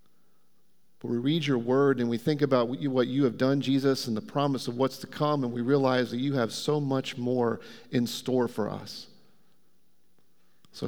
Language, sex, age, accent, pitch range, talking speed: English, male, 40-59, American, 125-150 Hz, 190 wpm